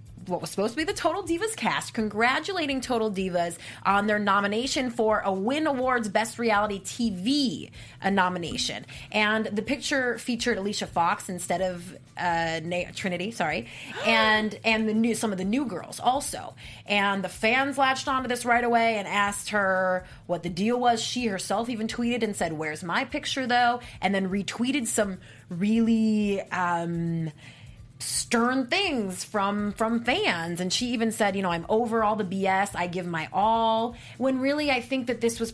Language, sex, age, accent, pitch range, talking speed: English, female, 20-39, American, 180-235 Hz, 175 wpm